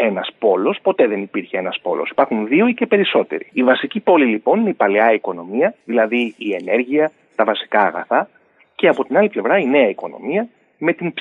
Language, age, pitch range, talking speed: Greek, 30-49, 125-210 Hz, 215 wpm